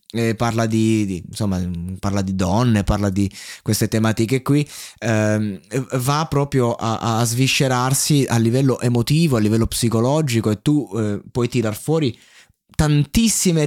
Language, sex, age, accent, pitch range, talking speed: Italian, male, 20-39, native, 110-145 Hz, 140 wpm